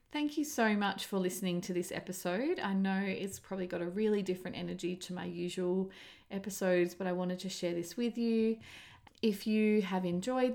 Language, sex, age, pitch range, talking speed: English, female, 30-49, 175-230 Hz, 195 wpm